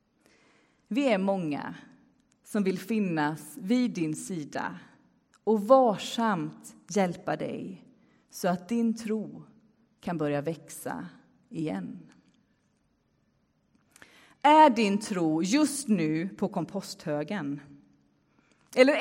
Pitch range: 160-235 Hz